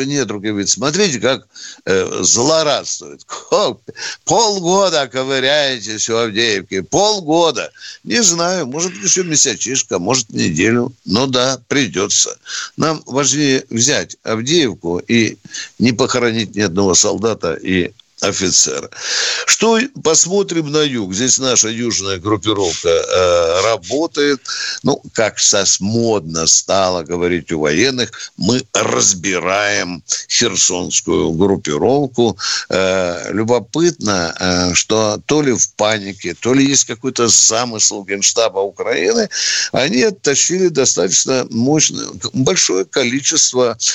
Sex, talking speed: male, 105 wpm